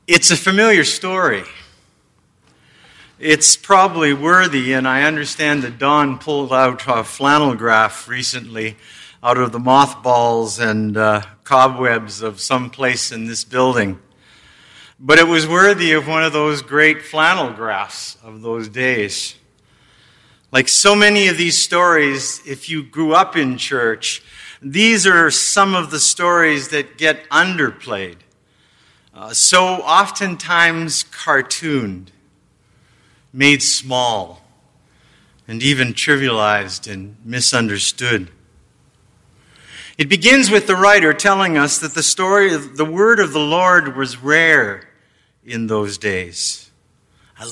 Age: 50-69